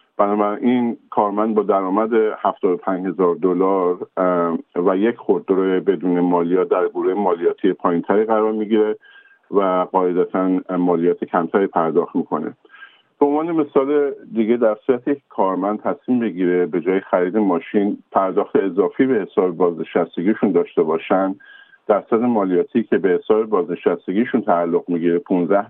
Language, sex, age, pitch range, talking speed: Persian, male, 50-69, 95-135 Hz, 125 wpm